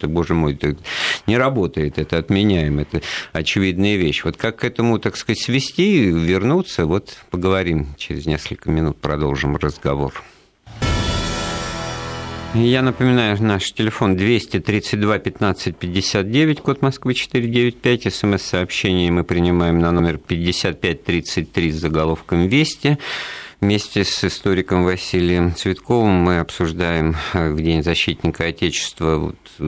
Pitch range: 80-105 Hz